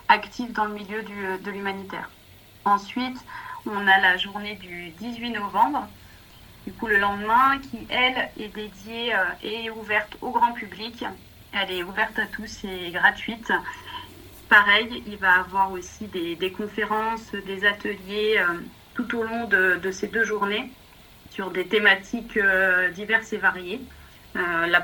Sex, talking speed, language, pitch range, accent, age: female, 150 wpm, French, 190-220 Hz, French, 30-49